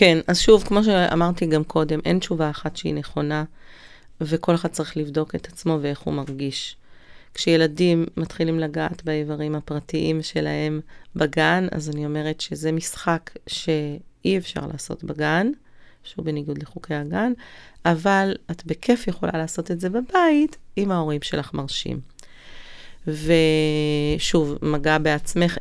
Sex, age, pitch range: female, 30-49, 150-180 Hz